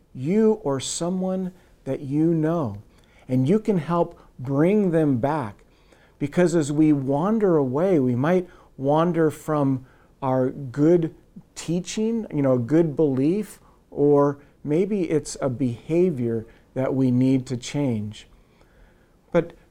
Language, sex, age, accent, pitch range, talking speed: English, male, 50-69, American, 130-170 Hz, 120 wpm